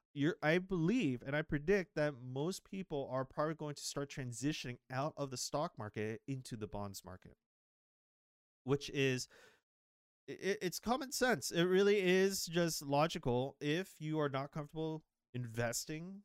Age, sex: 30-49, male